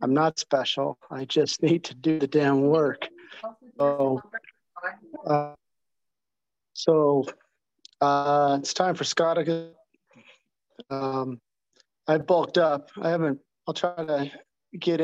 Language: English